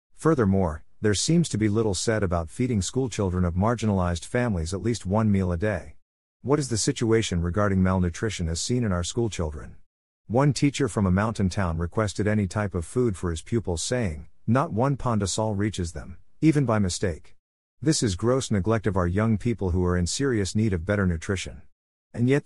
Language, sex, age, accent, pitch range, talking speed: English, male, 50-69, American, 90-115 Hz, 190 wpm